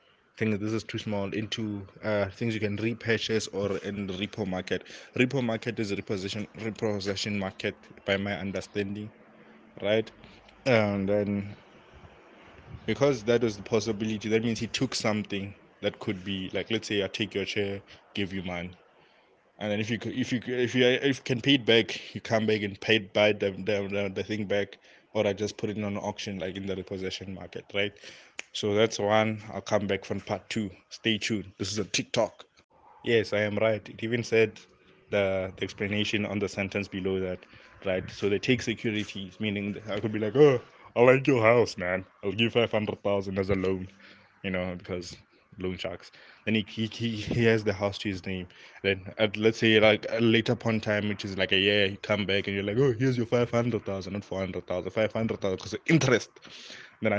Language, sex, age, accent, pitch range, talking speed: English, male, 20-39, South African, 100-115 Hz, 200 wpm